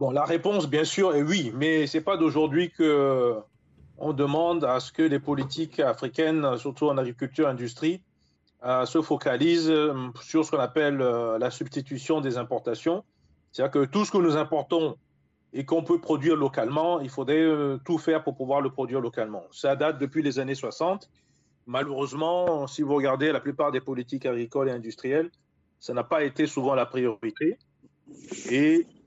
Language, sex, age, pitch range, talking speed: German, male, 40-59, 135-175 Hz, 170 wpm